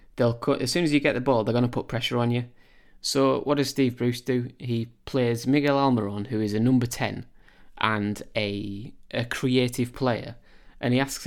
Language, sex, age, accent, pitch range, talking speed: English, male, 20-39, British, 110-135 Hz, 195 wpm